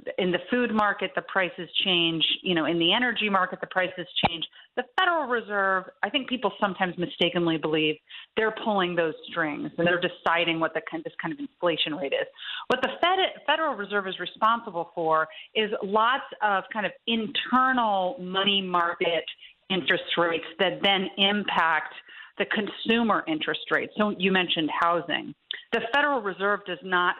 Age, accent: 40-59, American